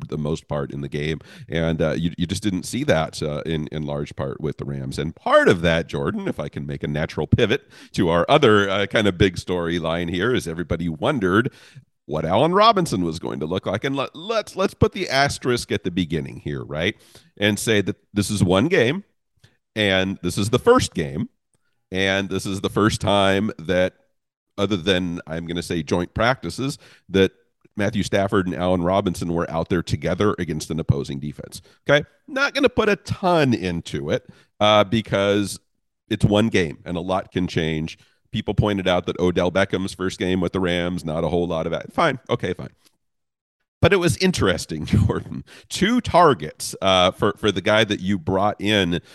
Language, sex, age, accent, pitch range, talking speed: English, male, 40-59, American, 85-105 Hz, 200 wpm